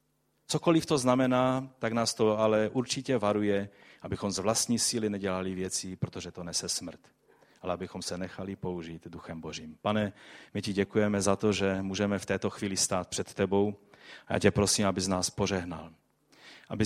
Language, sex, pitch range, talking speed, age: Czech, male, 95-115 Hz, 170 wpm, 30-49